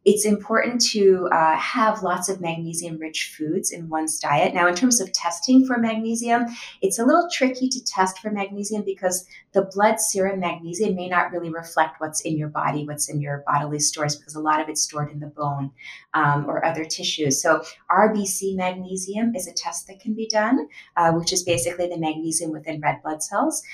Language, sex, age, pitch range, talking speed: English, female, 30-49, 160-195 Hz, 200 wpm